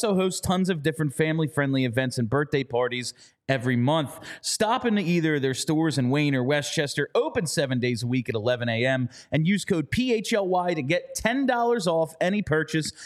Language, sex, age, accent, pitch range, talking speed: English, male, 30-49, American, 140-190 Hz, 185 wpm